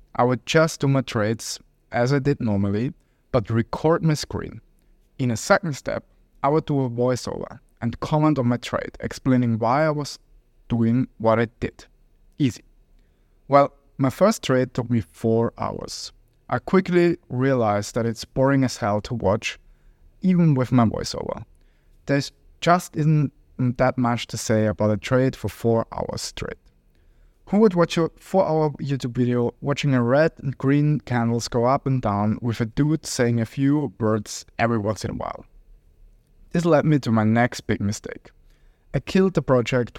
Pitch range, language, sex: 115-145 Hz, English, male